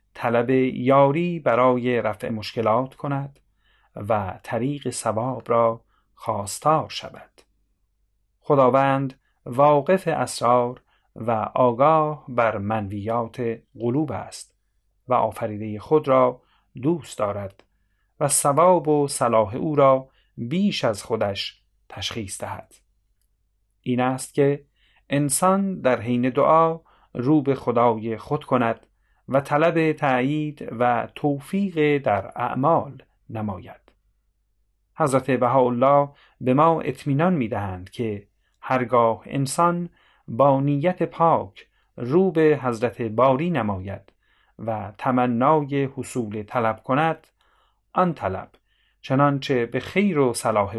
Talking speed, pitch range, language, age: 105 wpm, 110-145 Hz, Persian, 30-49